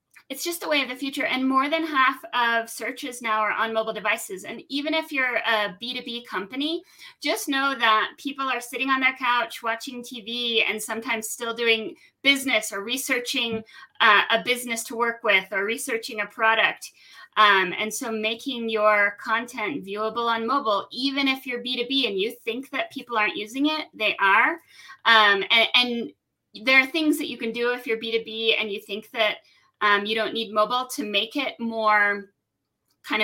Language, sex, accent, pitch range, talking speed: English, female, American, 210-265 Hz, 185 wpm